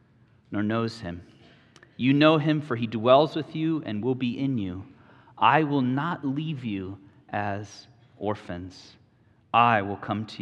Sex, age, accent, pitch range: male, 30-49, American, 105-140 Hz